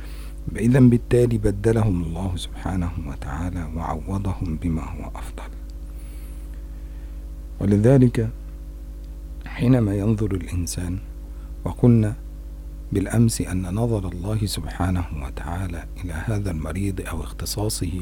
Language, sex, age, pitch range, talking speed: Indonesian, male, 50-69, 75-100 Hz, 85 wpm